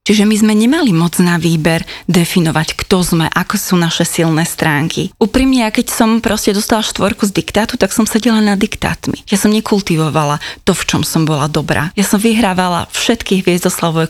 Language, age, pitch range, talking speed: Slovak, 20-39, 170-210 Hz, 180 wpm